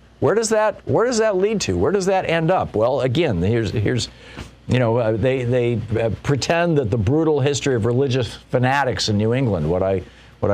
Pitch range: 115-155 Hz